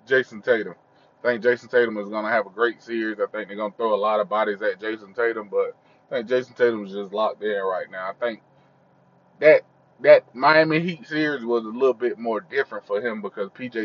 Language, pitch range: English, 105-125 Hz